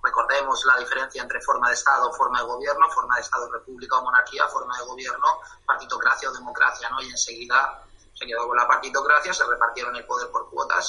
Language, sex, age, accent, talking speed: Spanish, male, 30-49, Spanish, 200 wpm